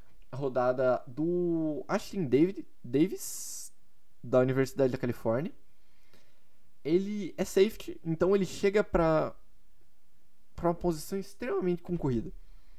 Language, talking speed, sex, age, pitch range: Portuguese, 95 wpm, male, 20-39, 130-170 Hz